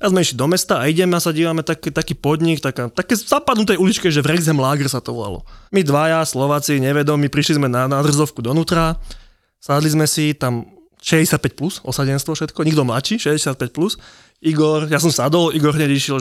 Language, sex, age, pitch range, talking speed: Slovak, male, 20-39, 135-170 Hz, 200 wpm